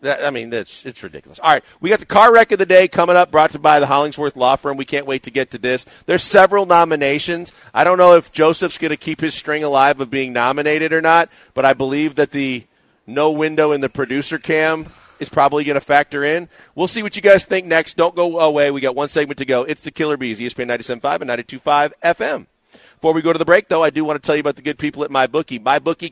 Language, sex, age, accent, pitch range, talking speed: English, male, 40-59, American, 140-170 Hz, 255 wpm